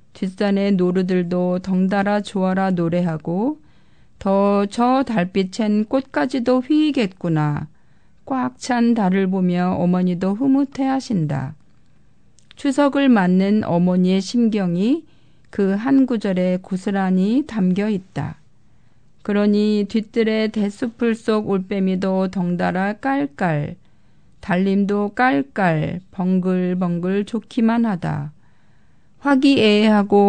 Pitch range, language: 185-240 Hz, Korean